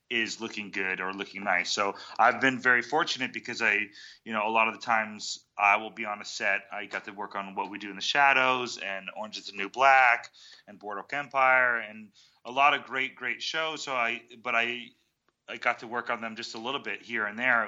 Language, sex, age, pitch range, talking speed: English, male, 30-49, 100-120 Hz, 240 wpm